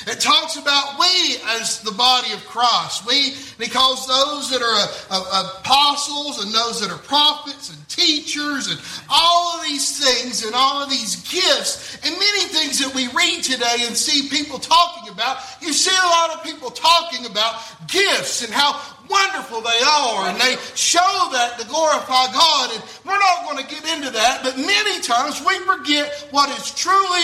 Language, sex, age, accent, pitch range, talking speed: English, male, 50-69, American, 255-325 Hz, 180 wpm